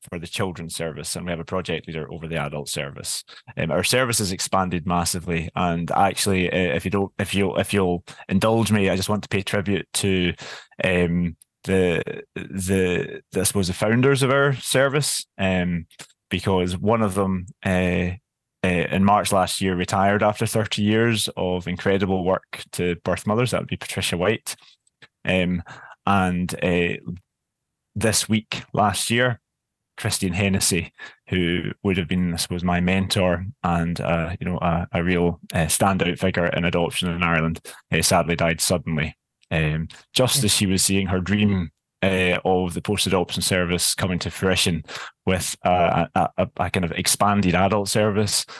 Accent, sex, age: British, male, 20-39